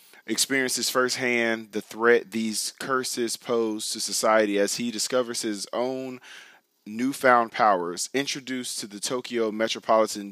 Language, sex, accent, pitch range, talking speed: English, male, American, 105-125 Hz, 120 wpm